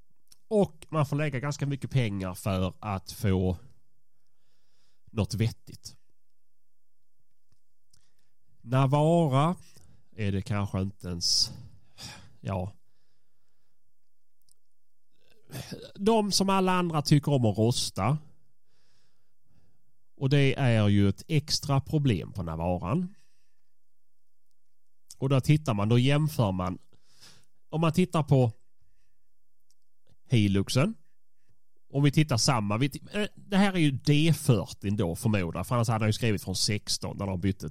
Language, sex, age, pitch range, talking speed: Swedish, male, 30-49, 95-145 Hz, 110 wpm